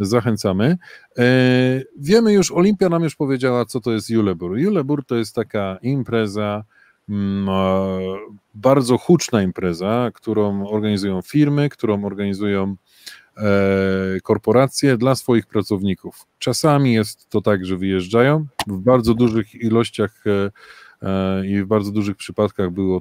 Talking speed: 115 wpm